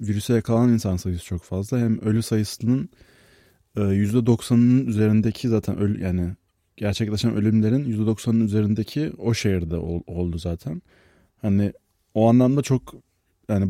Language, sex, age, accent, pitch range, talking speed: Turkish, male, 30-49, native, 95-115 Hz, 115 wpm